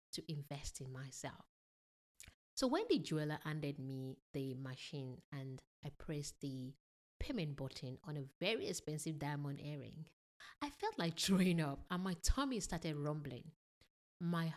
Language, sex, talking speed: English, female, 145 wpm